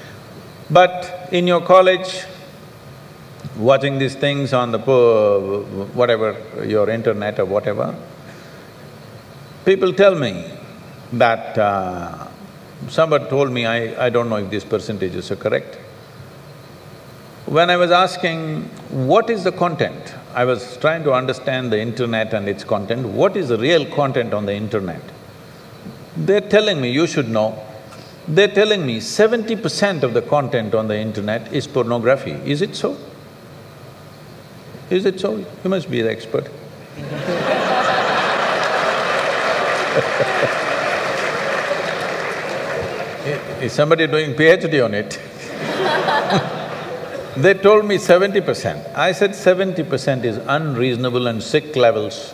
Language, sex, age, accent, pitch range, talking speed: English, male, 50-69, Indian, 120-180 Hz, 125 wpm